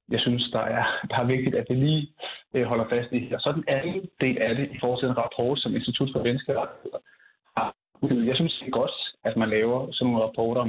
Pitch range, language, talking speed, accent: 115-140 Hz, Danish, 240 wpm, native